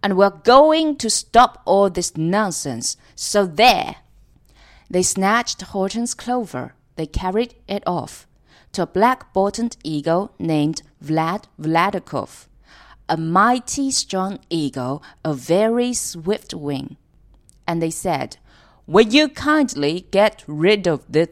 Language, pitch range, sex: Chinese, 160-225 Hz, female